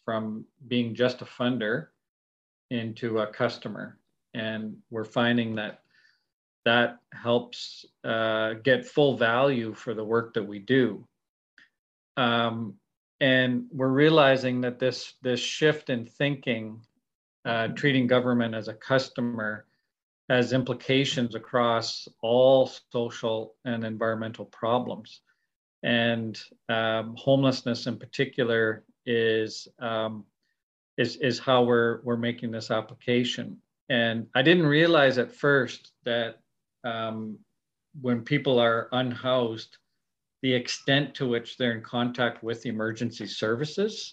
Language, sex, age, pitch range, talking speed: English, male, 40-59, 115-130 Hz, 115 wpm